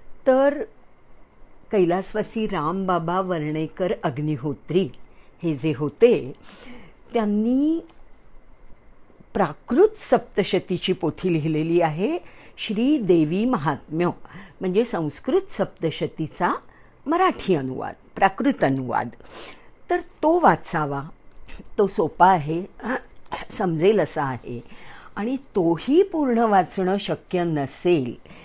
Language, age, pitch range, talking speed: English, 50-69, 155-230 Hz, 85 wpm